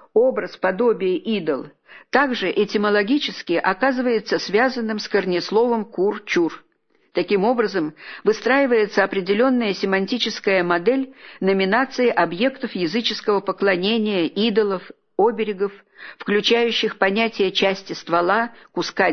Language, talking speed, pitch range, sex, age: Russian, 85 wpm, 190-245 Hz, female, 50-69